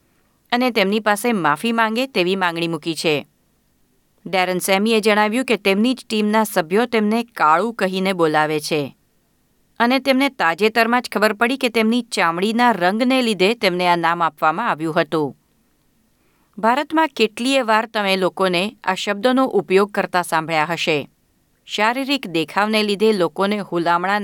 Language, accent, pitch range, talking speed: Gujarati, native, 170-230 Hz, 135 wpm